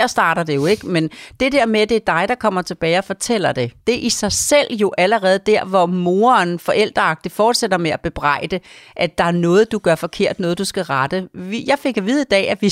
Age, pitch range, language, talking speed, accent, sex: 40-59, 175-225 Hz, Danish, 245 wpm, native, female